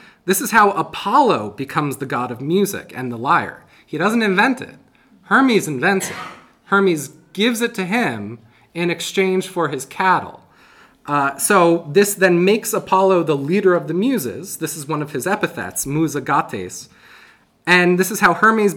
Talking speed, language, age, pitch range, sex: 165 wpm, English, 30-49, 145-195 Hz, male